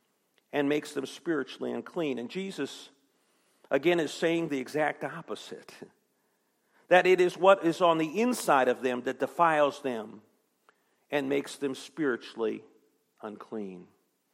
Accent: American